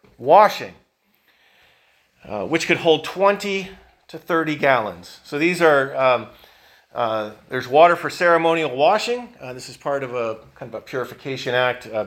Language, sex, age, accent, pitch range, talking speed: English, male, 40-59, American, 125-175 Hz, 155 wpm